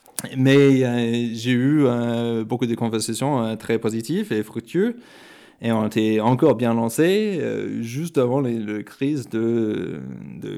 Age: 20-39